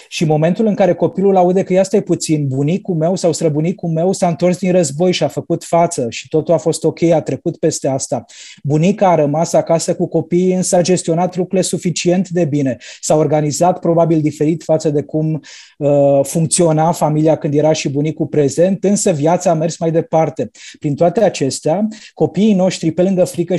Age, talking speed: 20-39, 190 wpm